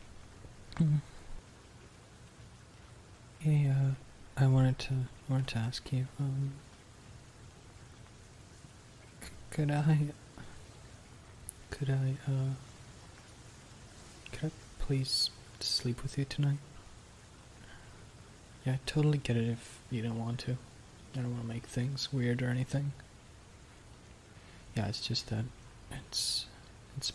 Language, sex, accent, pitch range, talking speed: English, male, American, 110-135 Hz, 105 wpm